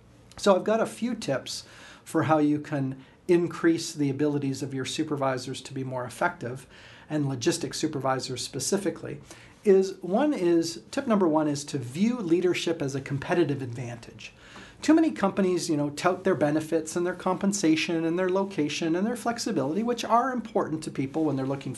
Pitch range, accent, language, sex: 140-190 Hz, American, English, male